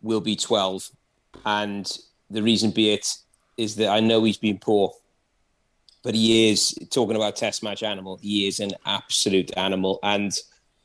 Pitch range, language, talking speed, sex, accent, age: 100-115 Hz, English, 160 wpm, male, British, 30-49